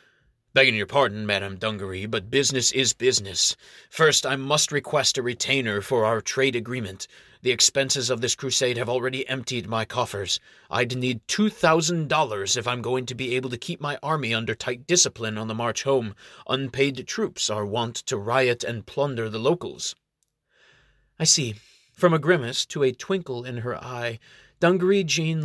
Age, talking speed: 30-49, 170 wpm